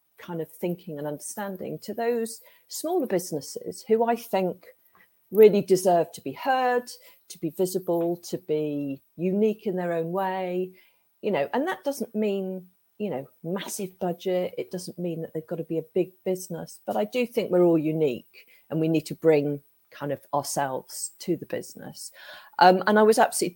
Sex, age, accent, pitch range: female, 40-59, British, 155-195 Hz